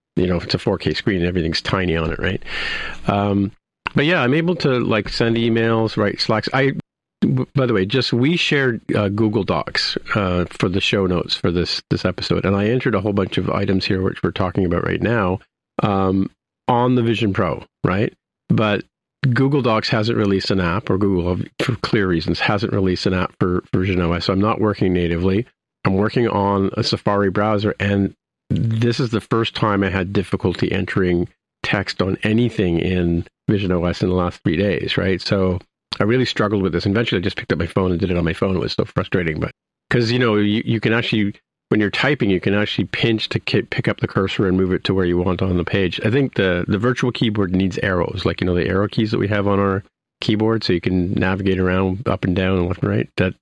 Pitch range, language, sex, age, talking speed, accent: 90-115 Hz, English, male, 50-69, 225 wpm, American